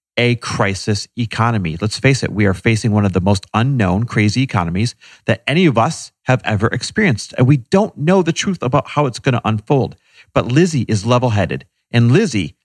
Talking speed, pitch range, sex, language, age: 195 wpm, 110-150 Hz, male, English, 40-59